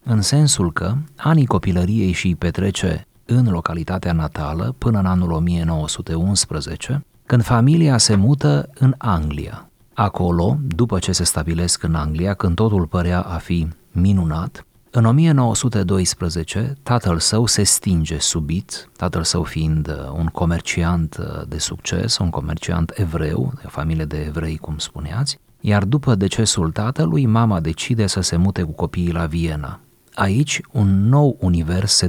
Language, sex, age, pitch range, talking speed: Romanian, male, 30-49, 85-115 Hz, 140 wpm